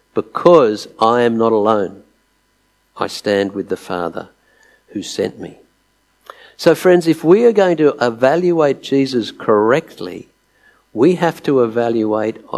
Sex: male